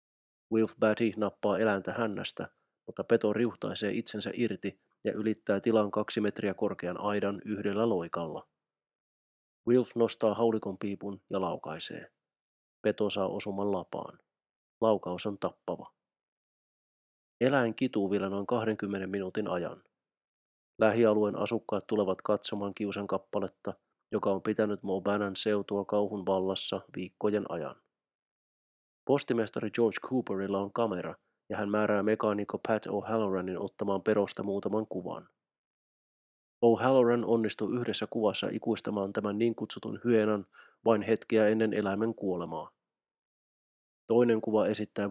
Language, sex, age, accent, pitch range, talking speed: Finnish, male, 30-49, native, 100-110 Hz, 115 wpm